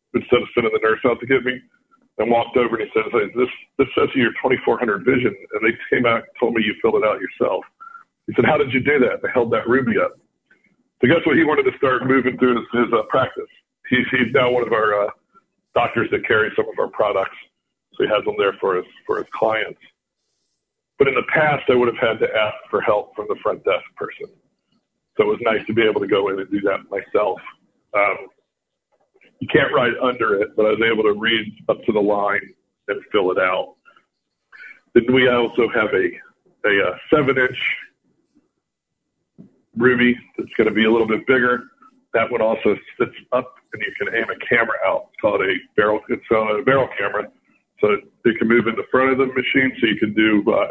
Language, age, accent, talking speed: English, 50-69, American, 220 wpm